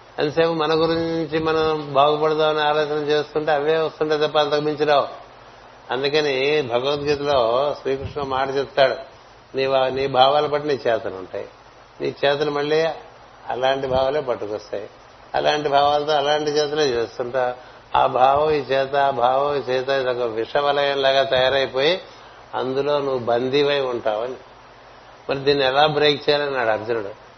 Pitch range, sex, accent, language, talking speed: 135-155 Hz, male, native, Telugu, 105 wpm